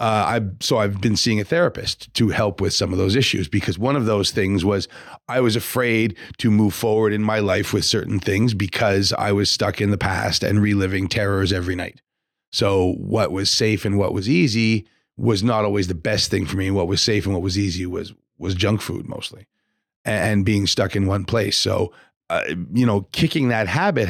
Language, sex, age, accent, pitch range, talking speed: English, male, 40-59, American, 100-115 Hz, 215 wpm